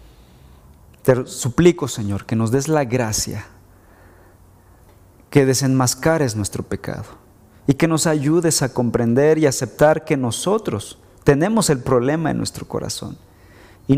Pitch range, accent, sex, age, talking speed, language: 95-125 Hz, Mexican, male, 40-59, 125 wpm, Spanish